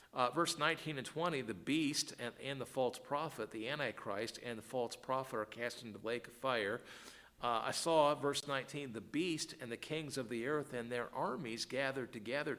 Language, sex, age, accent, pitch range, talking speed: English, male, 50-69, American, 110-140 Hz, 205 wpm